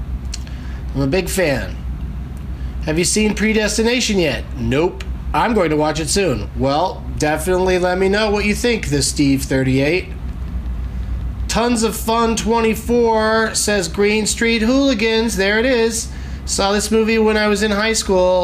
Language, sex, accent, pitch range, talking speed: English, male, American, 130-180 Hz, 150 wpm